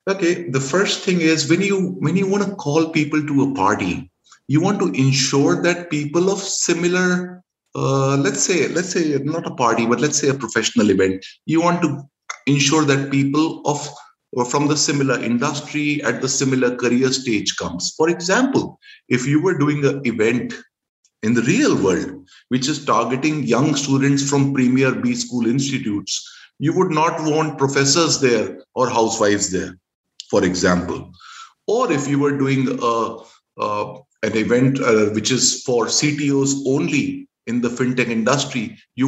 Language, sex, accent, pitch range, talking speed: English, male, Indian, 125-165 Hz, 165 wpm